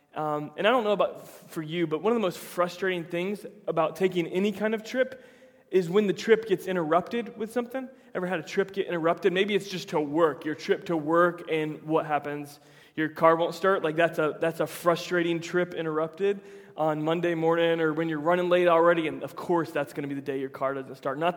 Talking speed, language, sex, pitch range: 235 wpm, English, male, 160-190 Hz